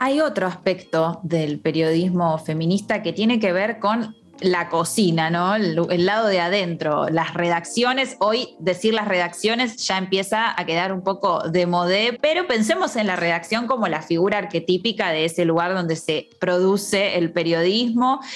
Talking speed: 165 wpm